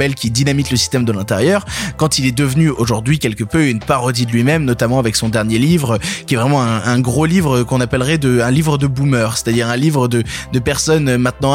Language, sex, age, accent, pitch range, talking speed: French, male, 20-39, French, 130-165 Hz, 225 wpm